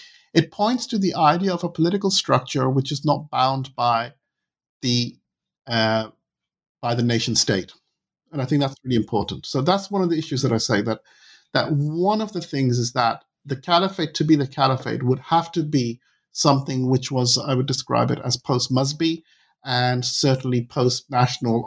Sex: male